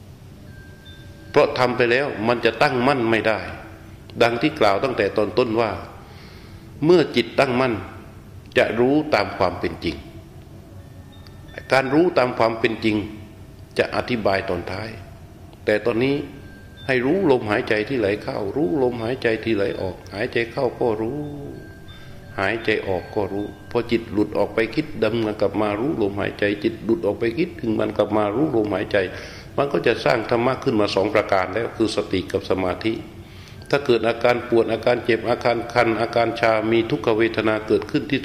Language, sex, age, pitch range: Thai, male, 60-79, 105-120 Hz